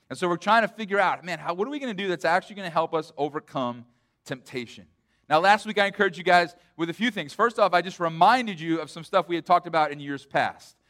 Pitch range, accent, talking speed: 135-180 Hz, American, 270 wpm